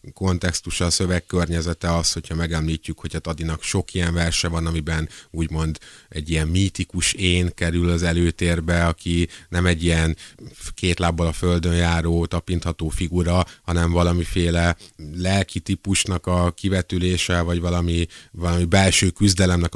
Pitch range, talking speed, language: 80-90 Hz, 135 wpm, Hungarian